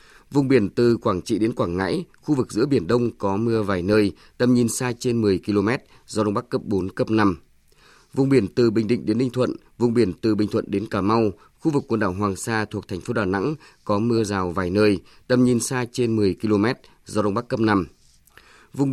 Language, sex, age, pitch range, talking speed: Vietnamese, male, 20-39, 100-125 Hz, 235 wpm